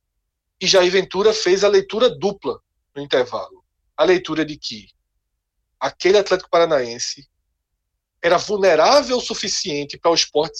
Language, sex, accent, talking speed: Portuguese, male, Brazilian, 130 wpm